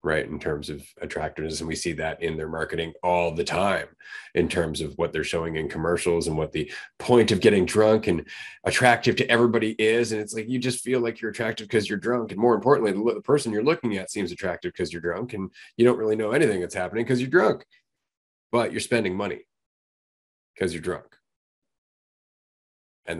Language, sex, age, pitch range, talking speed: English, male, 30-49, 90-150 Hz, 210 wpm